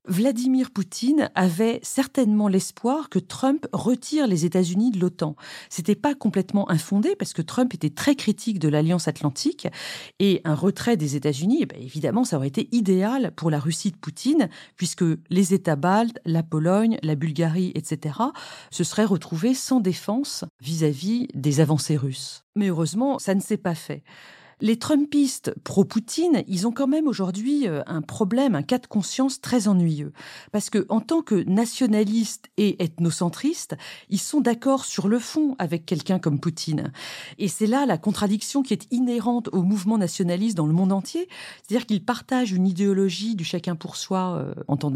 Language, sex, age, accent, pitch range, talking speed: French, female, 40-59, French, 170-245 Hz, 170 wpm